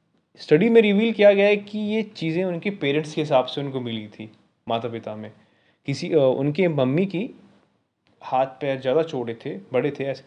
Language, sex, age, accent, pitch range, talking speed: Hindi, male, 30-49, native, 125-160 Hz, 185 wpm